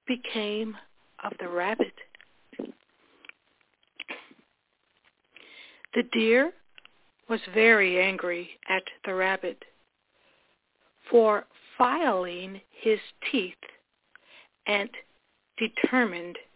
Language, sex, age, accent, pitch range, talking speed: English, female, 60-79, American, 195-250 Hz, 65 wpm